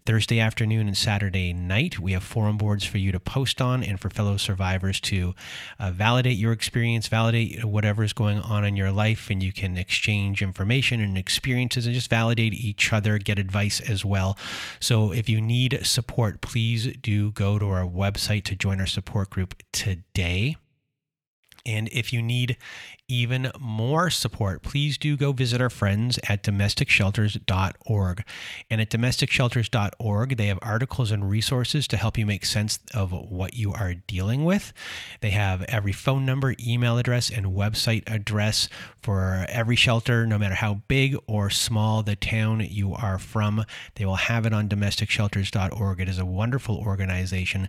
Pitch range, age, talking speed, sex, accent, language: 100-120 Hz, 30-49, 165 wpm, male, American, English